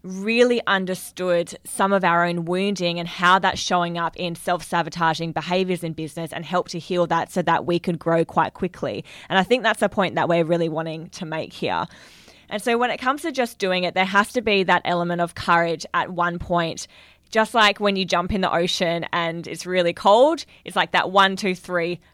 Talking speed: 215 wpm